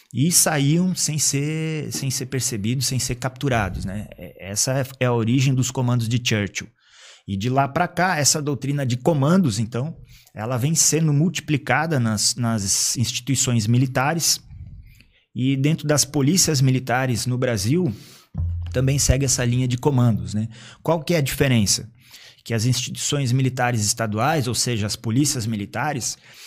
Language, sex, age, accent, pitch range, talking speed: Portuguese, male, 20-39, Brazilian, 115-145 Hz, 145 wpm